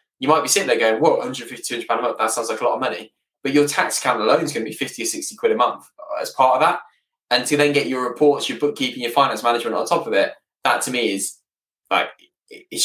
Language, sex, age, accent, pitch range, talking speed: English, male, 10-29, British, 110-145 Hz, 265 wpm